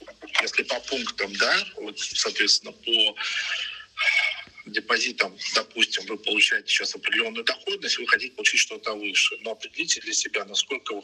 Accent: native